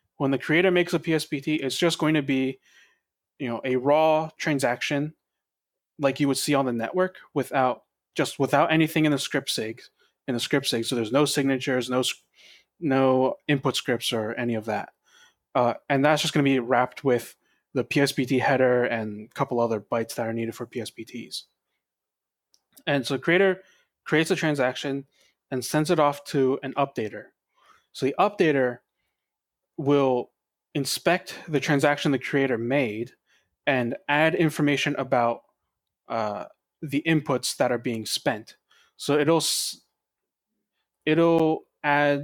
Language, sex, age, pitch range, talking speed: English, male, 20-39, 125-150 Hz, 155 wpm